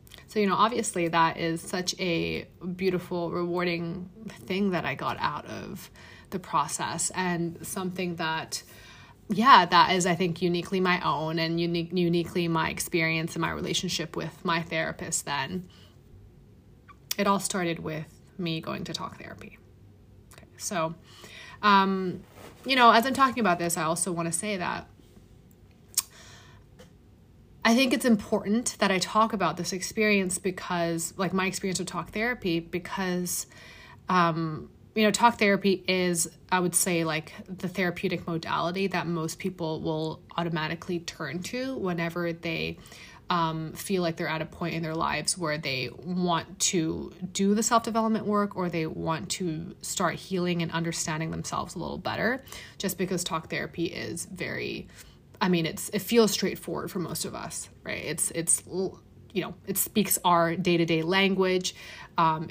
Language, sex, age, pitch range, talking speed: English, female, 20-39, 165-190 Hz, 155 wpm